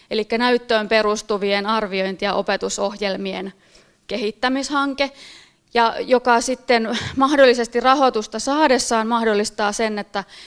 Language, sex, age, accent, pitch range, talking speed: Finnish, female, 30-49, native, 205-245 Hz, 90 wpm